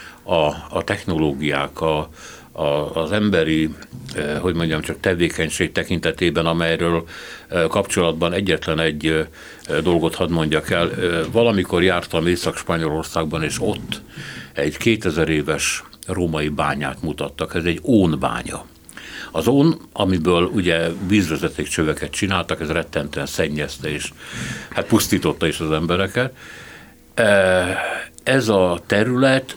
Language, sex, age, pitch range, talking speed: Hungarian, male, 60-79, 80-100 Hz, 120 wpm